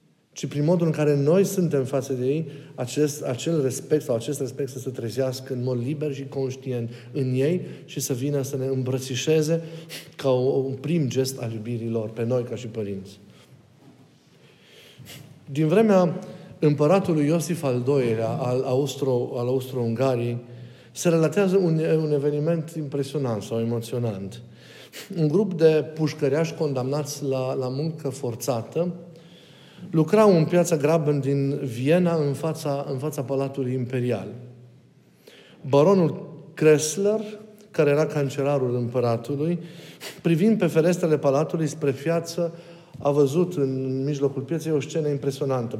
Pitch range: 130-160 Hz